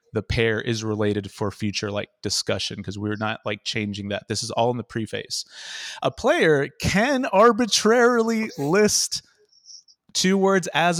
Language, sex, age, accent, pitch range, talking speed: English, male, 30-49, American, 120-195 Hz, 155 wpm